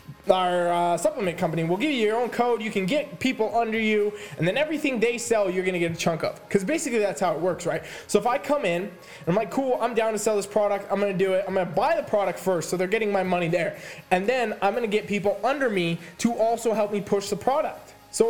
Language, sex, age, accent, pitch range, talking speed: English, male, 20-39, American, 180-230 Hz, 280 wpm